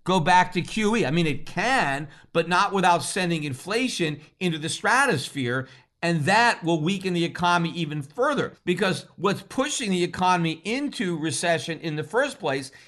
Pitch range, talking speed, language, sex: 160-205 Hz, 165 wpm, English, male